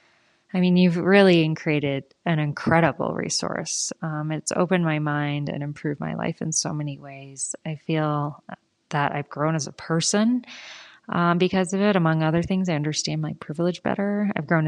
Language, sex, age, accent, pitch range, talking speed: English, female, 20-39, American, 150-180 Hz, 175 wpm